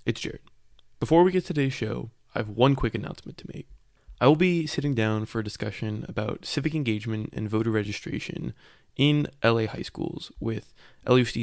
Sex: male